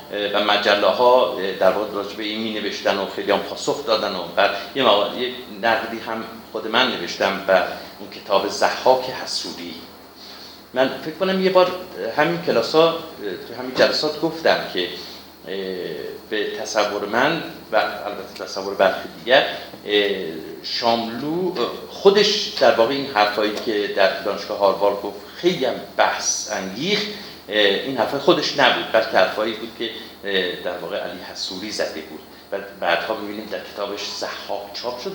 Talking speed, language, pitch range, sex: 135 wpm, Persian, 105-165 Hz, male